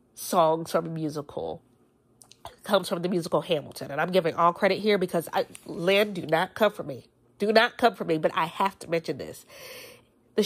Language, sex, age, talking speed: English, female, 40-59, 200 wpm